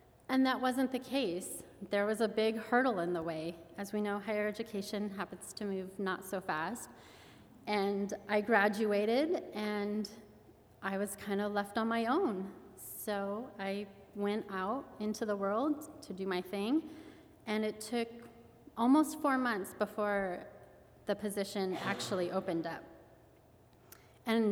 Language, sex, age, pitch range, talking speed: English, female, 30-49, 195-230 Hz, 145 wpm